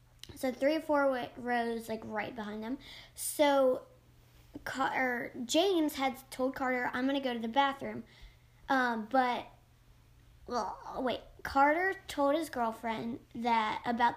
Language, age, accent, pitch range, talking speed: English, 20-39, American, 235-280 Hz, 135 wpm